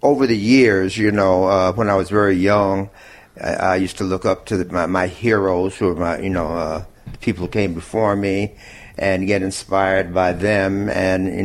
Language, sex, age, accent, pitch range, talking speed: English, male, 50-69, American, 95-105 Hz, 205 wpm